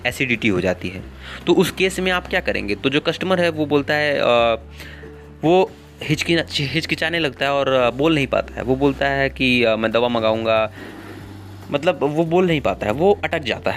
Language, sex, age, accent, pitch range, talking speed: Hindi, male, 20-39, native, 105-160 Hz, 185 wpm